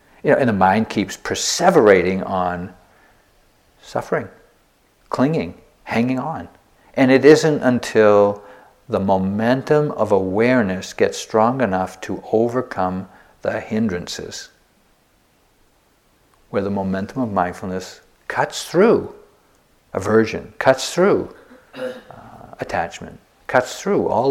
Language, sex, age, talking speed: English, male, 50-69, 105 wpm